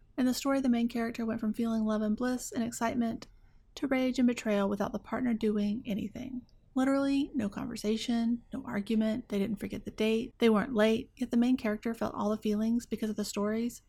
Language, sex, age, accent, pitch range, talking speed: English, female, 30-49, American, 210-245 Hz, 205 wpm